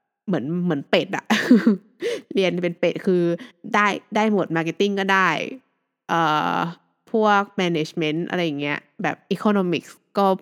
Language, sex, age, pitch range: Thai, female, 20-39, 160-205 Hz